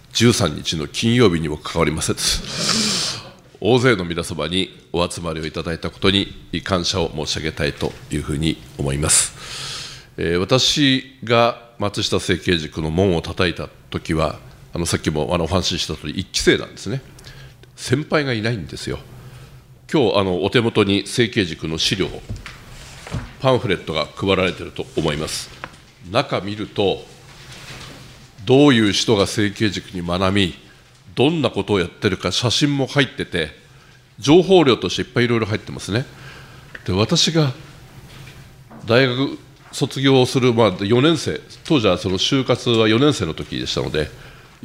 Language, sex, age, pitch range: Japanese, male, 50-69, 90-130 Hz